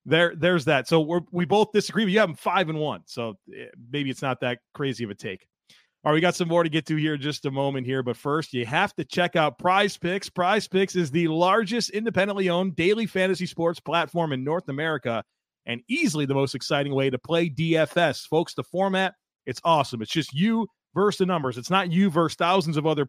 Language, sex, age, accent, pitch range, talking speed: English, male, 30-49, American, 140-185 Hz, 230 wpm